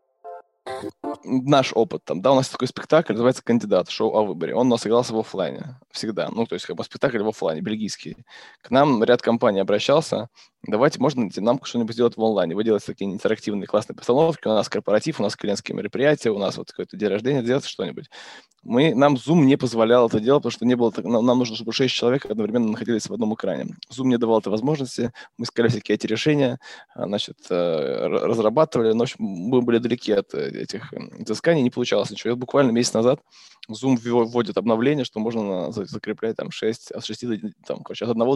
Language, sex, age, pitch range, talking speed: Russian, male, 20-39, 115-130 Hz, 190 wpm